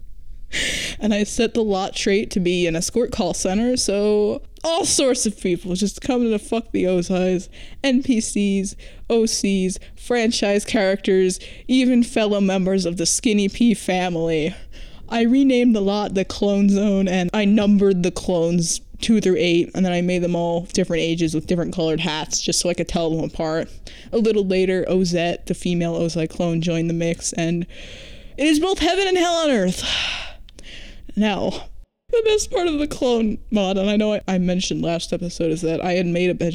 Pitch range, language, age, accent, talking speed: 170-220 Hz, English, 20-39, American, 185 wpm